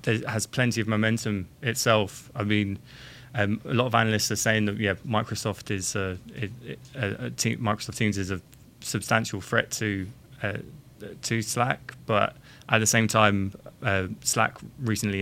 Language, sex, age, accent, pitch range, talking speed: English, male, 20-39, British, 100-120 Hz, 165 wpm